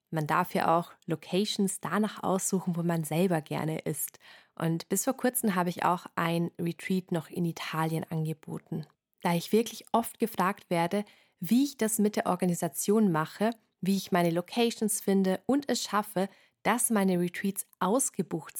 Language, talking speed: German, 160 wpm